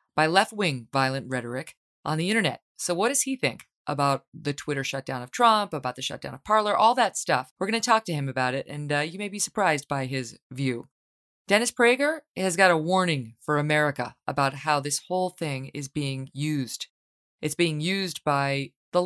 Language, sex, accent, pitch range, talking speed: English, female, American, 135-190 Hz, 200 wpm